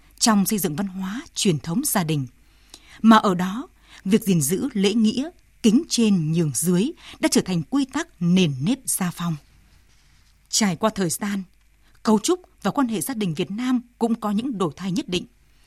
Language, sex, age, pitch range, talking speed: Vietnamese, female, 20-39, 180-240 Hz, 190 wpm